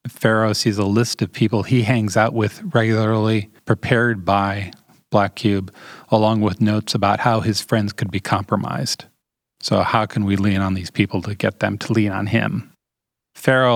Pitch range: 105-120 Hz